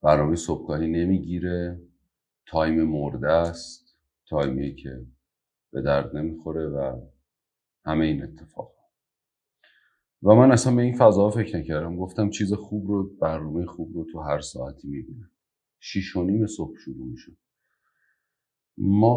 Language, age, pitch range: Persian, 40-59, 75-100 Hz